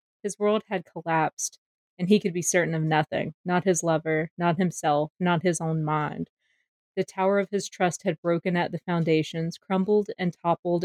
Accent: American